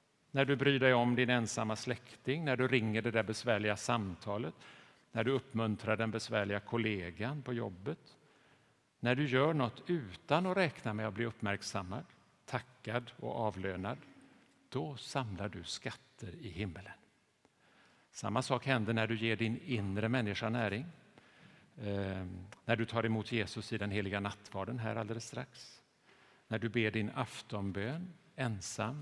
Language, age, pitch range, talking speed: Swedish, 50-69, 105-135 Hz, 145 wpm